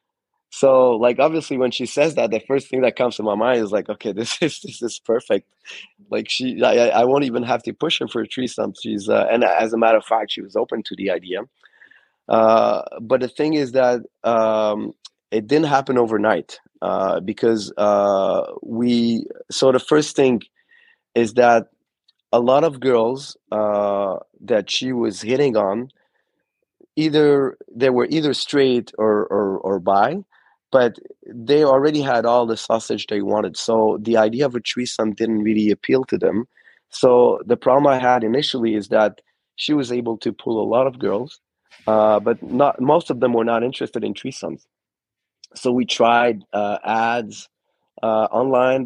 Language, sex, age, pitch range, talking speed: English, male, 20-39, 110-135 Hz, 180 wpm